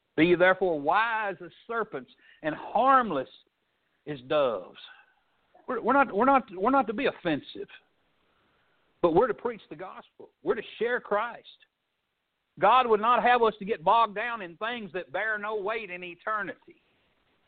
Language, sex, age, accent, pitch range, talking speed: English, male, 60-79, American, 175-255 Hz, 155 wpm